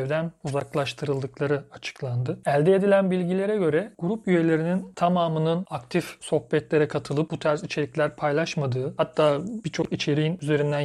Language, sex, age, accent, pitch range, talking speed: Turkish, male, 40-59, native, 140-160 Hz, 110 wpm